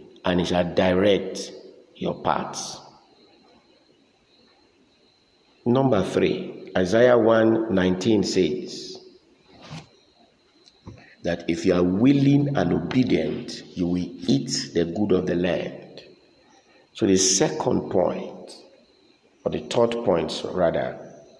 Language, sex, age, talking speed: English, male, 50-69, 100 wpm